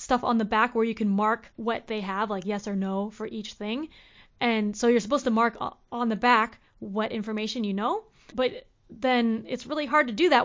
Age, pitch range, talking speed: 20-39, 210-245 Hz, 225 wpm